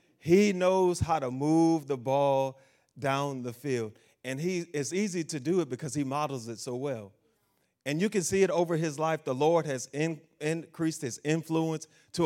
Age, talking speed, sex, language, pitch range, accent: 30-49, 185 wpm, male, English, 135-170 Hz, American